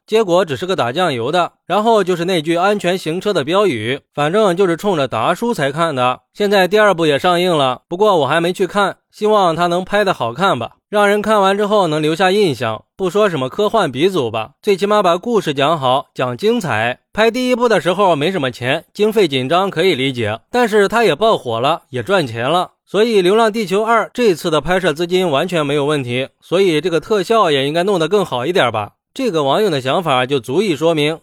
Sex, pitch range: male, 145-210 Hz